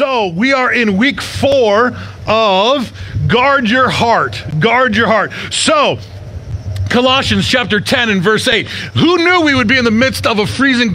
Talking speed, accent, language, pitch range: 170 wpm, American, English, 170-260 Hz